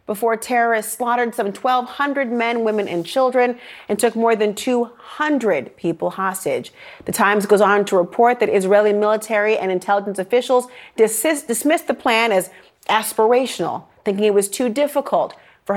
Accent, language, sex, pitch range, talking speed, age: American, English, female, 180-245 Hz, 150 wpm, 30-49